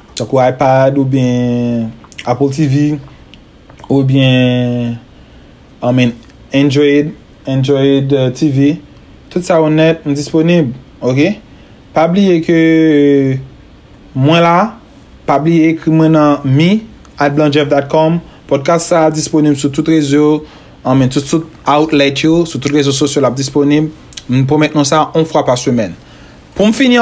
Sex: male